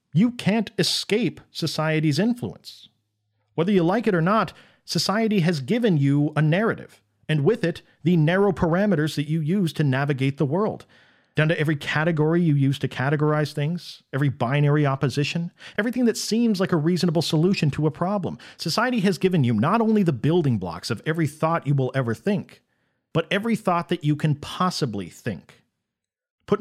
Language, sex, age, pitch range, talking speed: English, male, 40-59, 145-195 Hz, 175 wpm